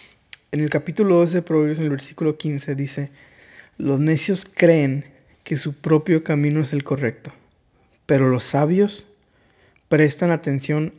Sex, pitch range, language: male, 145-170 Hz, Spanish